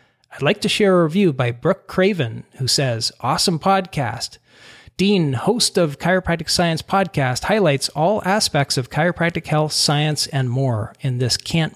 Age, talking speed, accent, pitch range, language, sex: 40-59, 160 wpm, American, 135-180 Hz, English, male